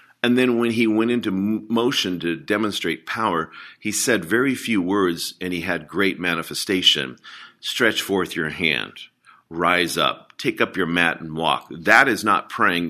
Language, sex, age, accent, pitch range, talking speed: English, male, 50-69, American, 85-105 Hz, 170 wpm